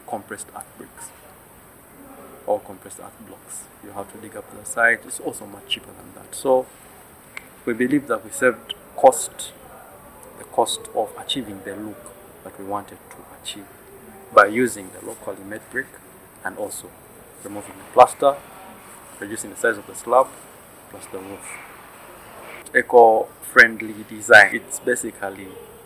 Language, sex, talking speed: English, male, 145 wpm